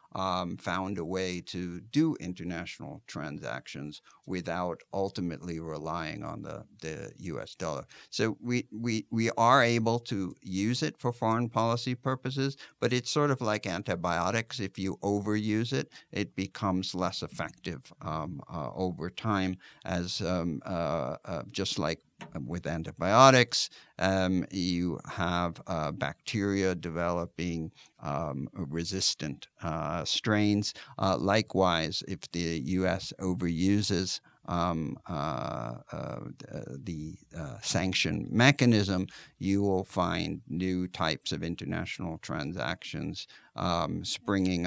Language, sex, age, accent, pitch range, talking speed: English, male, 60-79, American, 85-100 Hz, 115 wpm